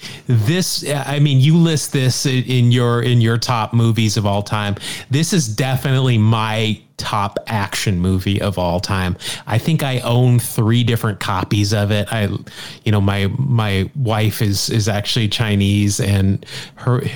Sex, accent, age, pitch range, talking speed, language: male, American, 30-49, 105-125 Hz, 160 wpm, English